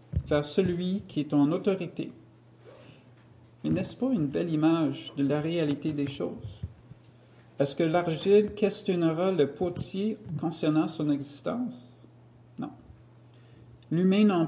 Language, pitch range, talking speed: French, 140-175 Hz, 120 wpm